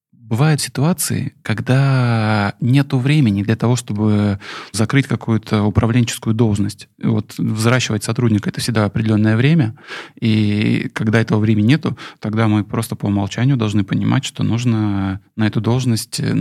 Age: 20-39